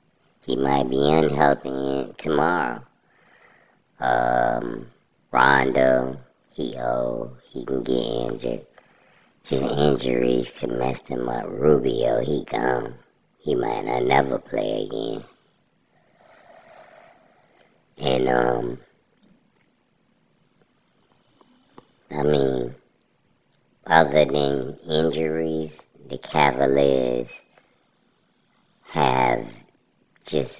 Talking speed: 75 wpm